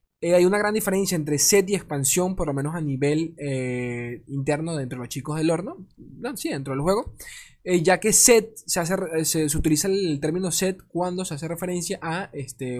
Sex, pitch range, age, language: male, 145-185 Hz, 20-39, Spanish